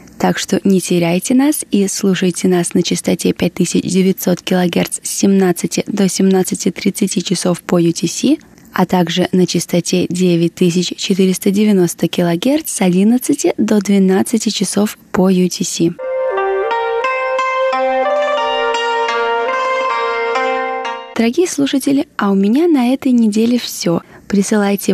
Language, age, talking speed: Russian, 20-39, 100 wpm